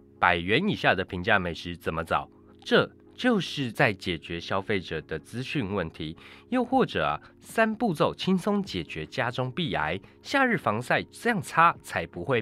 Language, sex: Chinese, male